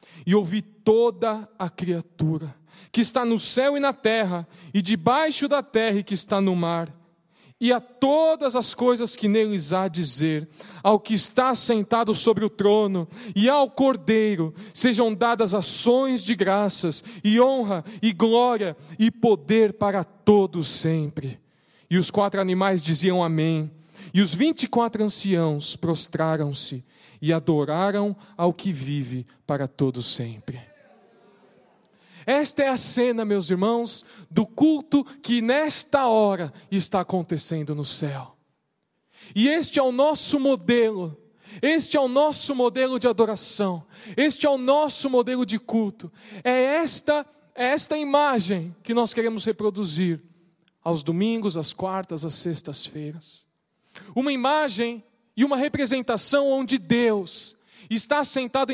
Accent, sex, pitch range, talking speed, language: Brazilian, male, 175-245 Hz, 135 wpm, Portuguese